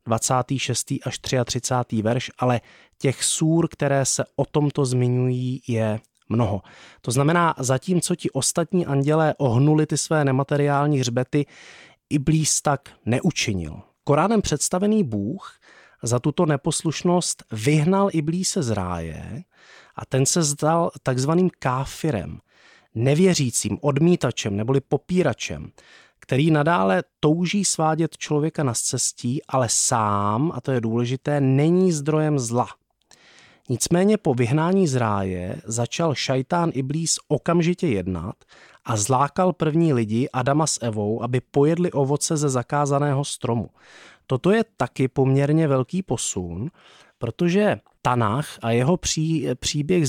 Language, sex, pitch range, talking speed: Czech, male, 125-160 Hz, 120 wpm